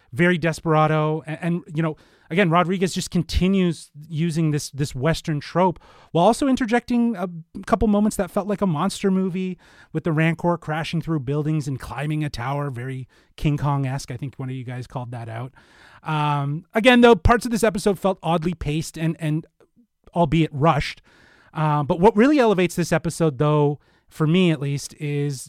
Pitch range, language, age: 130-170 Hz, English, 30-49